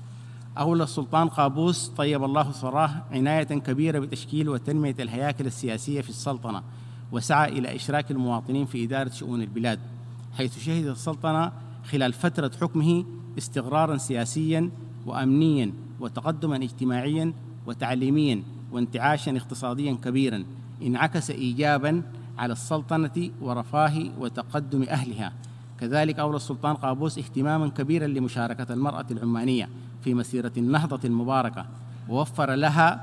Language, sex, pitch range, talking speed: Arabic, male, 120-145 Hz, 105 wpm